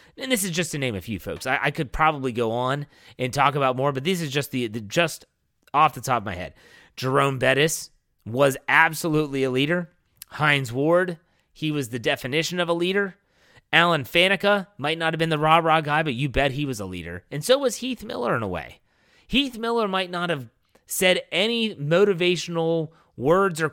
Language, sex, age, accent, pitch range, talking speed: English, male, 30-49, American, 125-165 Hz, 205 wpm